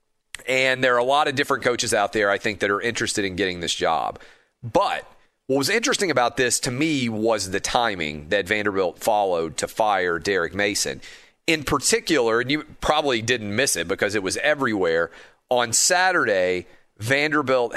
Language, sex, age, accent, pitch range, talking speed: English, male, 40-59, American, 100-135 Hz, 175 wpm